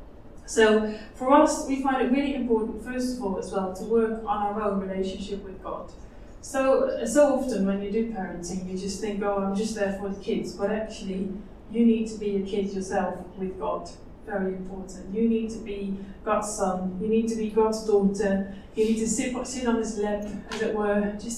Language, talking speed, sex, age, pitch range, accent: English, 210 wpm, female, 20-39, 200-235 Hz, British